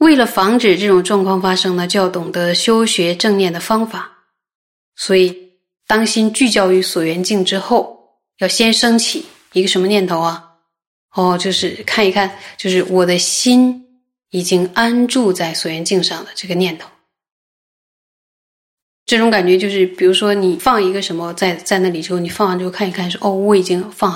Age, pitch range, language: 20-39, 180-225 Hz, Chinese